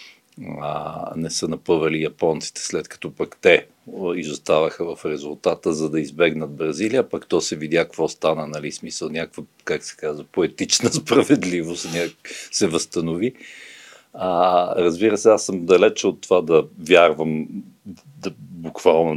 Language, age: Bulgarian, 50-69